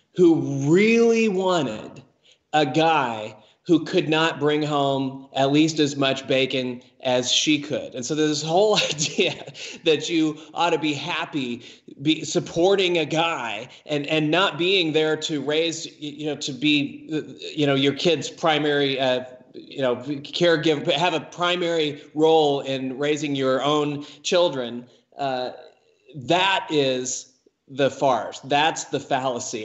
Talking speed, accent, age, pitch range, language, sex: 140 wpm, American, 20-39, 135-170 Hz, English, male